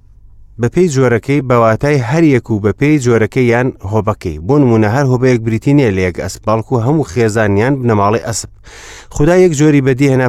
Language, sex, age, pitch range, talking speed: English, male, 30-49, 105-135 Hz, 145 wpm